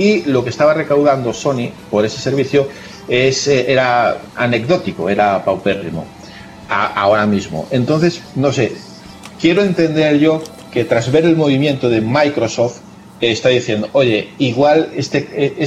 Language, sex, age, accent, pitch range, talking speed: French, male, 40-59, Spanish, 115-145 Hz, 135 wpm